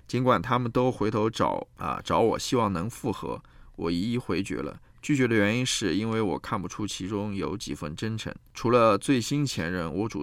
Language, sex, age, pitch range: Chinese, male, 20-39, 90-110 Hz